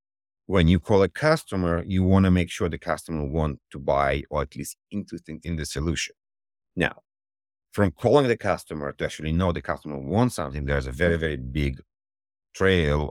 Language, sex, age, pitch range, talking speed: English, male, 50-69, 70-95 Hz, 185 wpm